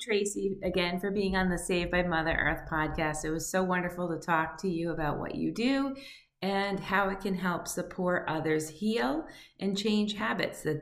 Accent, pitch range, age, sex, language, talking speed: American, 150-190 Hz, 30-49, female, English, 195 wpm